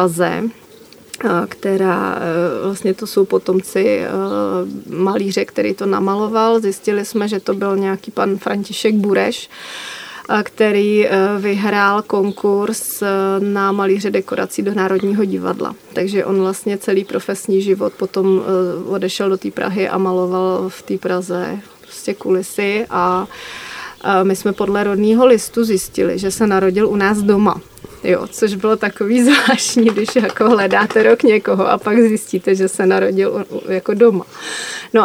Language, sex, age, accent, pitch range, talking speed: Czech, female, 30-49, native, 190-220 Hz, 135 wpm